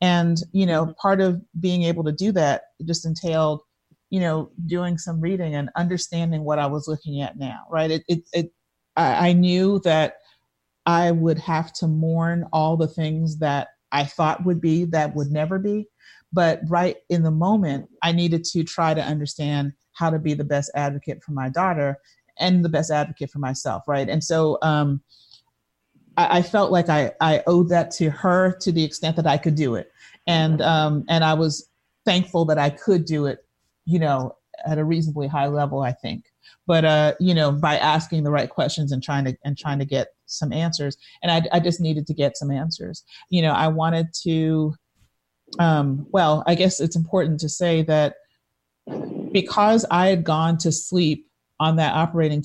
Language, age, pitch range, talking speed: English, 40-59, 150-170 Hz, 190 wpm